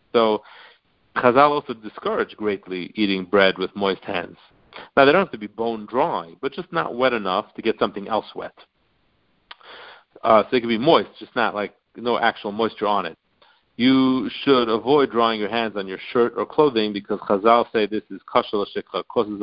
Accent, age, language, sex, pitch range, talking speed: American, 50-69, English, male, 100-125 Hz, 190 wpm